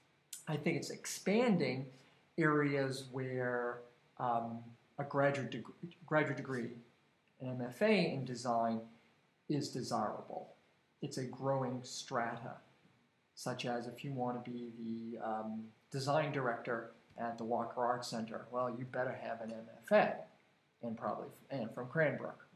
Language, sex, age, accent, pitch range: Korean, male, 50-69, American, 115-135 Hz